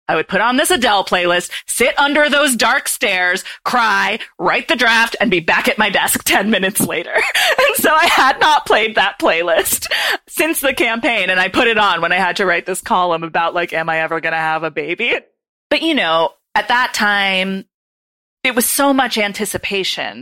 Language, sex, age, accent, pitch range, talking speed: English, female, 30-49, American, 170-225 Hz, 205 wpm